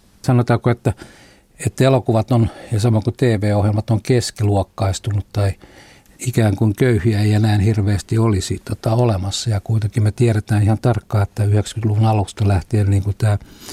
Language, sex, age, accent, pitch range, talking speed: Finnish, male, 60-79, native, 100-115 Hz, 150 wpm